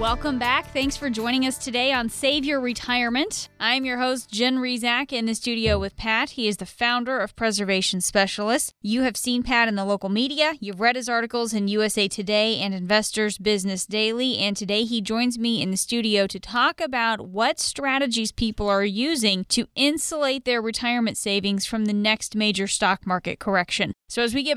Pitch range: 205-250 Hz